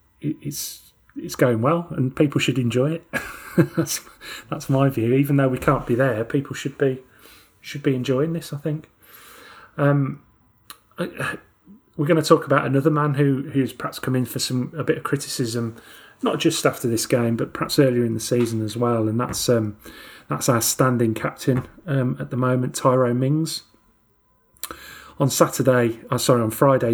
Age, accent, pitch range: 30-49, British, 115-140 Hz